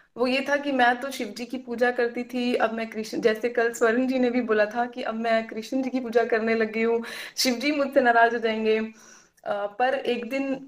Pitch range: 230-265 Hz